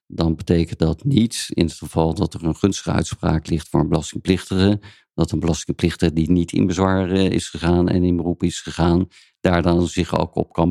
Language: Dutch